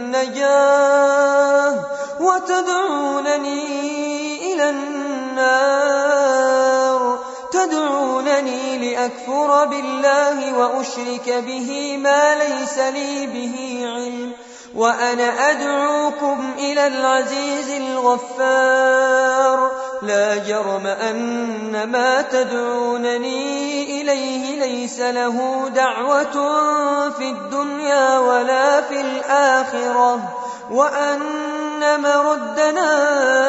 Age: 20-39